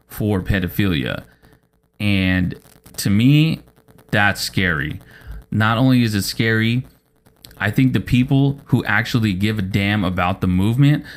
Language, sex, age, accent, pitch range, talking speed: English, male, 30-49, American, 95-120 Hz, 130 wpm